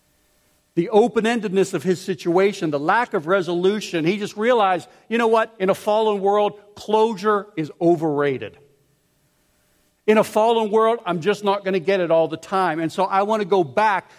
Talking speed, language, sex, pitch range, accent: 180 wpm, English, male, 160-205 Hz, American